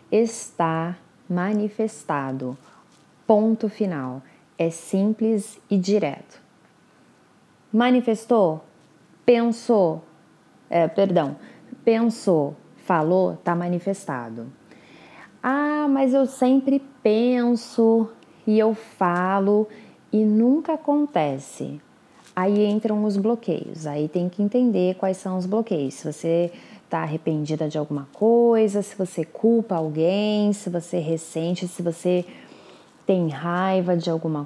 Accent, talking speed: Brazilian, 100 wpm